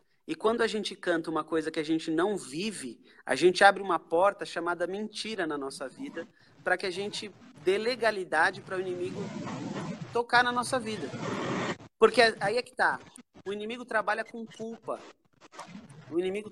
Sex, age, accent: male, 40-59, Brazilian